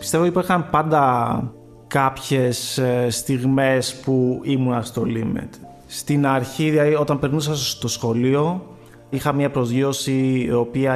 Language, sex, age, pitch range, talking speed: Greek, male, 20-39, 120-140 Hz, 115 wpm